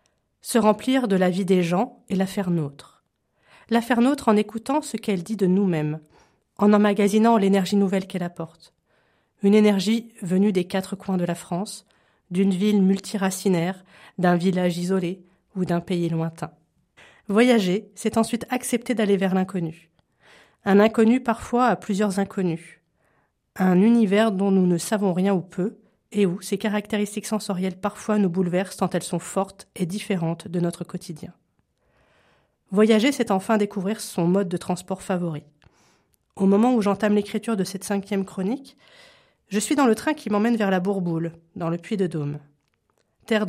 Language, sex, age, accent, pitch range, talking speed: French, female, 30-49, French, 180-220 Hz, 160 wpm